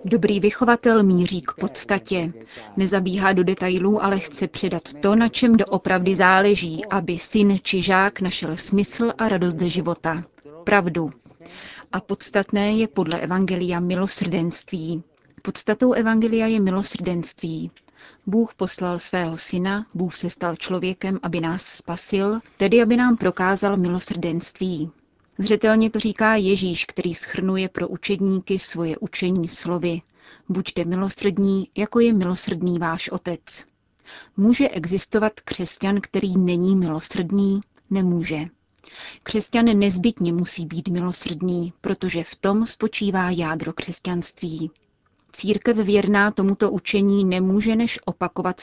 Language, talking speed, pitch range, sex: Czech, 120 wpm, 175-205 Hz, female